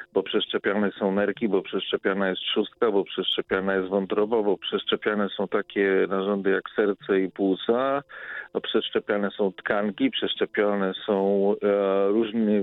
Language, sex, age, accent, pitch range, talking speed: Polish, male, 40-59, native, 105-125 Hz, 140 wpm